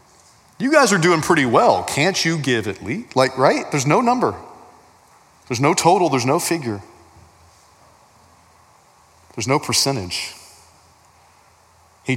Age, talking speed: 40-59, 130 wpm